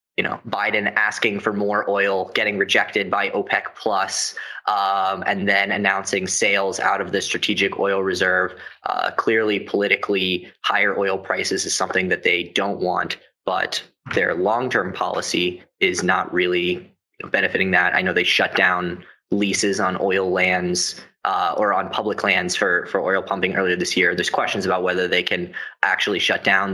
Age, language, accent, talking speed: 20-39, English, American, 165 wpm